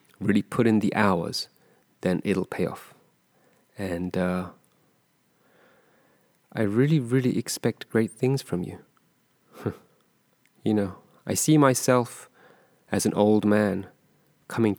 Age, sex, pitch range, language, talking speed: 30-49, male, 90-110 Hz, English, 120 wpm